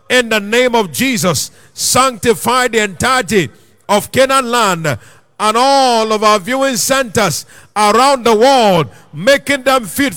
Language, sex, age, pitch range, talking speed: English, male, 50-69, 205-275 Hz, 135 wpm